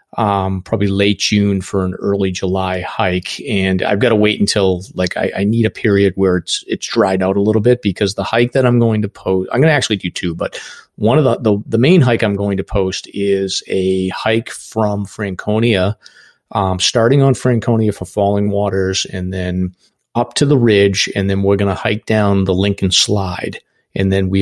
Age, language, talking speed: 40-59, English, 210 wpm